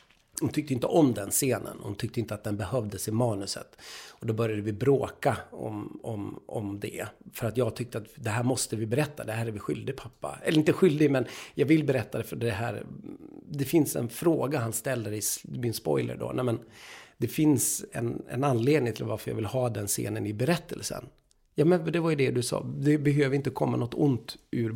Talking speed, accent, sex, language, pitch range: 220 wpm, Swedish, male, English, 110-145 Hz